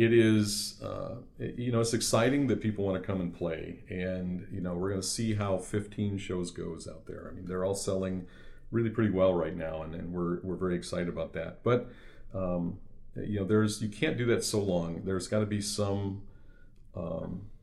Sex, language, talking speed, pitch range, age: male, English, 210 wpm, 90-105 Hz, 40-59